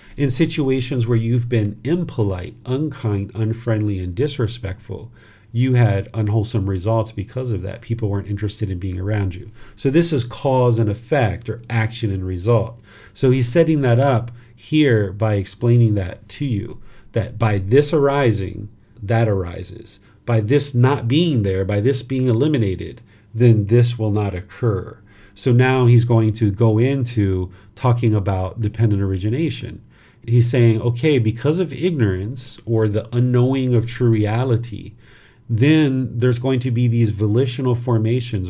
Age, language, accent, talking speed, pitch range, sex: 40-59, English, American, 150 wpm, 105-125 Hz, male